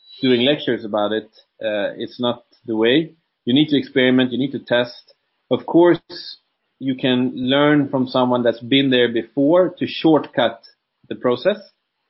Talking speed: 160 wpm